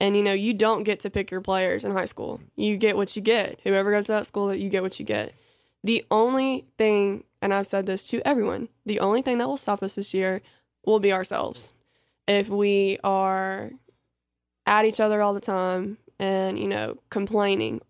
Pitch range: 195-220 Hz